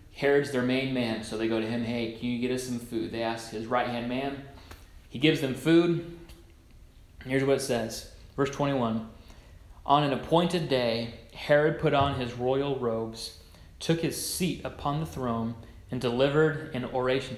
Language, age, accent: English, 30-49, American